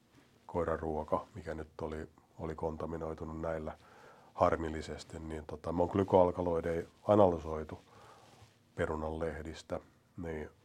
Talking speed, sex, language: 90 wpm, male, Finnish